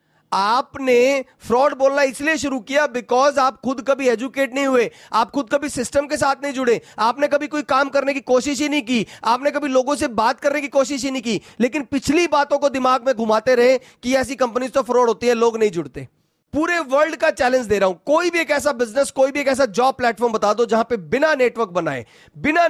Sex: male